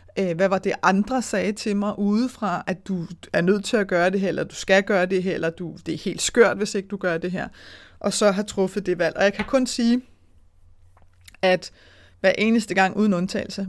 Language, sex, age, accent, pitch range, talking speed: Danish, female, 30-49, native, 165-205 Hz, 230 wpm